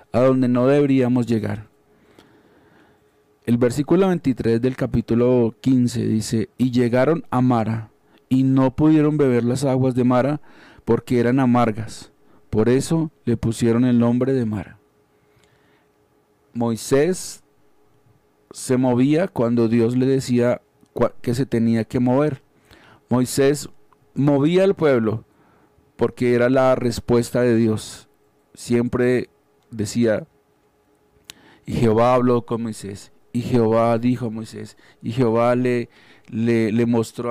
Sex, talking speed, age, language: male, 120 wpm, 40-59, Spanish